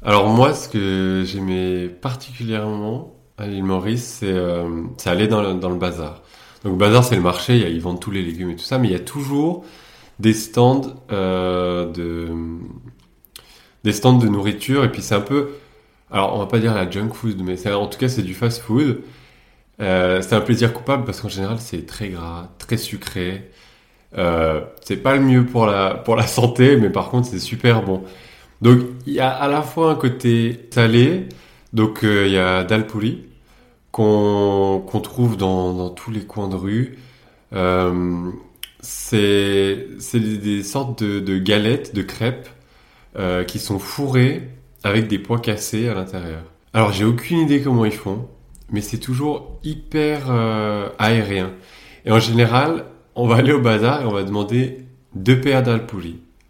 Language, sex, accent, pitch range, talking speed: French, male, French, 95-125 Hz, 185 wpm